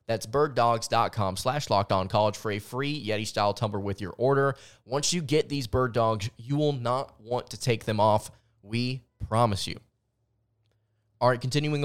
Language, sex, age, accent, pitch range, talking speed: English, male, 20-39, American, 105-130 Hz, 160 wpm